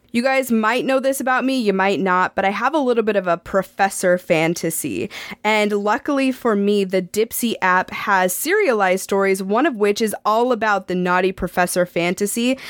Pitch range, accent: 195-245 Hz, American